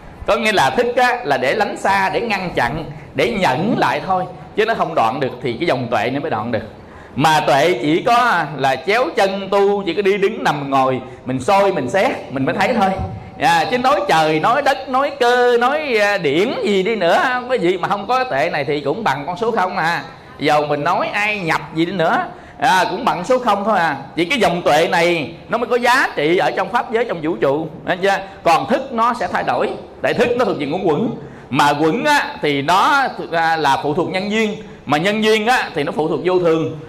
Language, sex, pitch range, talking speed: English, male, 165-225 Hz, 235 wpm